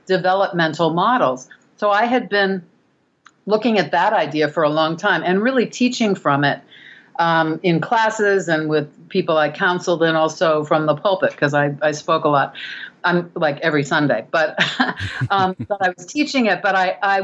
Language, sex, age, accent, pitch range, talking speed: English, female, 50-69, American, 155-195 Hz, 180 wpm